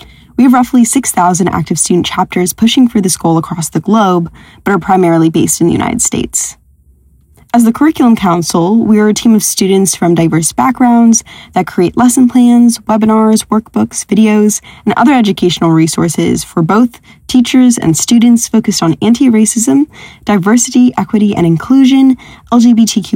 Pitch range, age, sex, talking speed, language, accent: 175-230 Hz, 10-29, female, 155 wpm, English, American